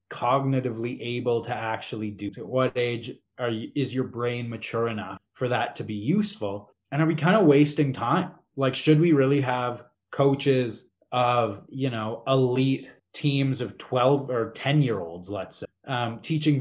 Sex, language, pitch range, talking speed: male, English, 110-135 Hz, 175 wpm